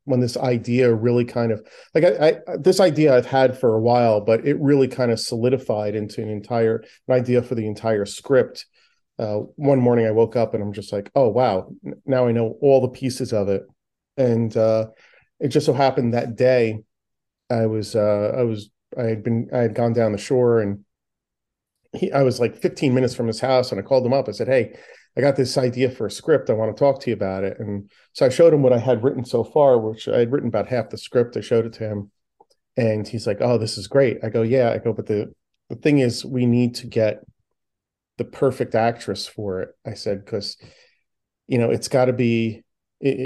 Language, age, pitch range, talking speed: English, 40-59, 110-130 Hz, 230 wpm